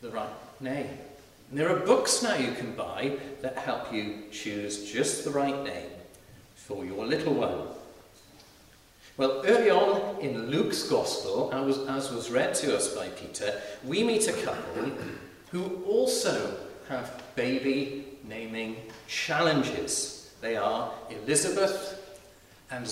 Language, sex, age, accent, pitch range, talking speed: English, male, 40-59, British, 110-170 Hz, 130 wpm